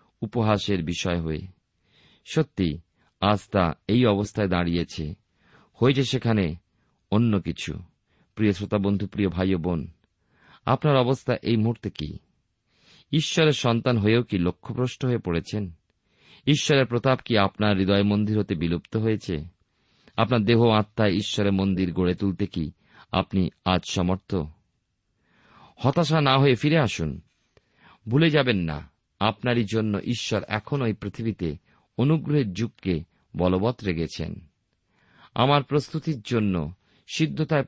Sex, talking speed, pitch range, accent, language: male, 110 wpm, 95-125 Hz, native, Bengali